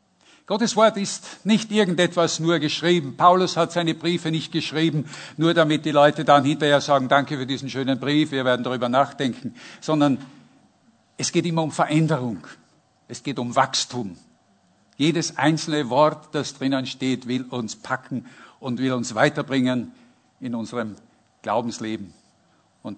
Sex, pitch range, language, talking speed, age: male, 130-165 Hz, German, 145 wpm, 50-69